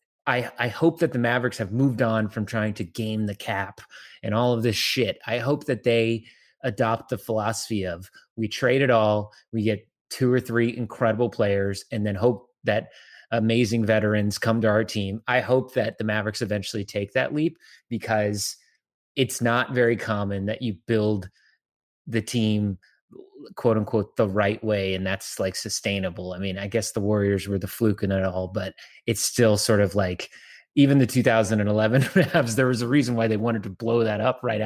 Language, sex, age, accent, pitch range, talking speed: English, male, 30-49, American, 105-120 Hz, 190 wpm